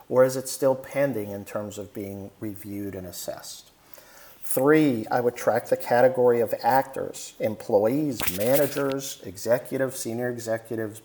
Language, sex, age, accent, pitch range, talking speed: English, male, 50-69, American, 105-145 Hz, 135 wpm